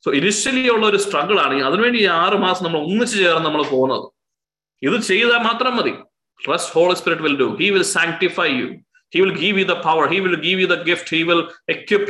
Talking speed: 190 wpm